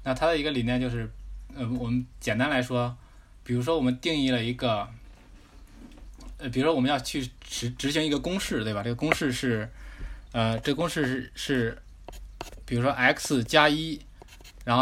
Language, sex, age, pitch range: Chinese, male, 20-39, 110-130 Hz